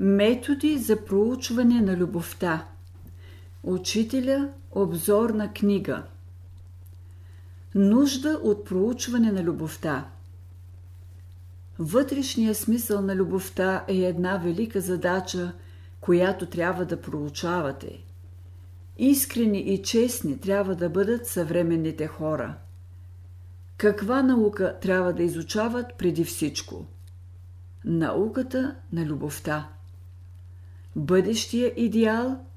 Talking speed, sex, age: 85 wpm, female, 50-69